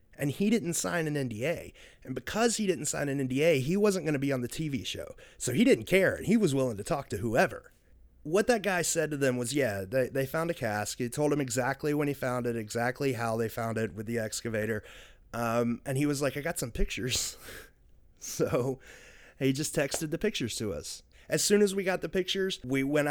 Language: English